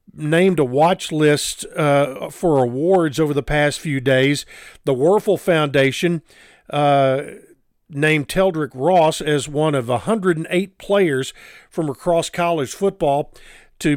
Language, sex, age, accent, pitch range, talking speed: English, male, 50-69, American, 145-175 Hz, 125 wpm